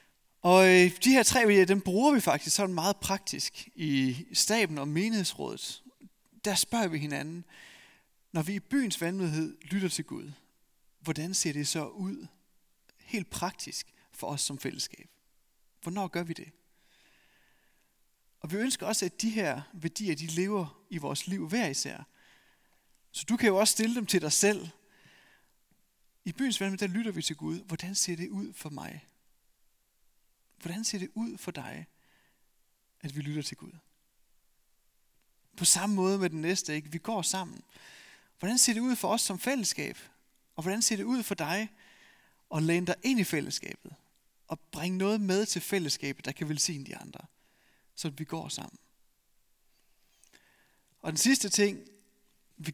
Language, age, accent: Danish, 30-49, native